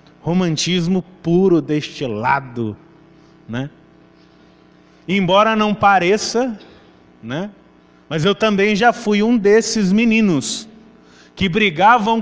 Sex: male